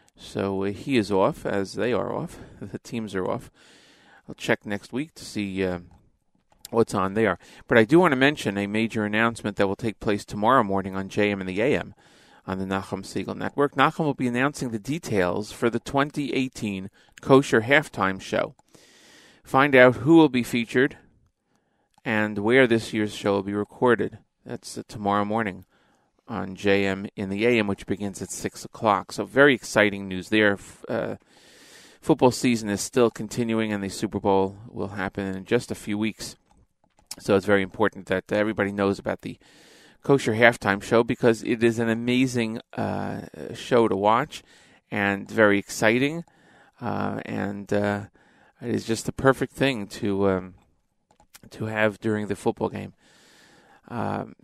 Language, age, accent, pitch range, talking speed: English, 40-59, American, 100-120 Hz, 165 wpm